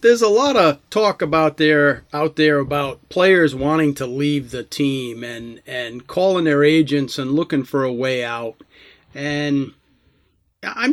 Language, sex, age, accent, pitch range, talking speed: English, male, 40-59, American, 140-170 Hz, 160 wpm